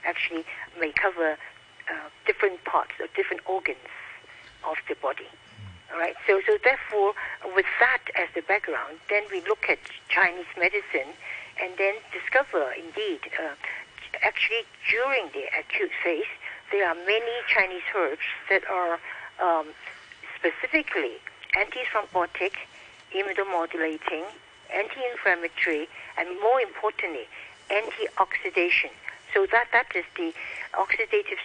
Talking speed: 115 wpm